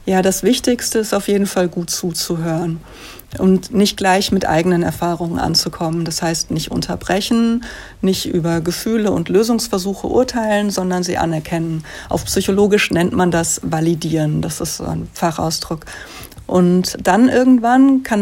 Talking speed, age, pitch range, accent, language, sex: 145 wpm, 60-79, 175-205 Hz, German, German, female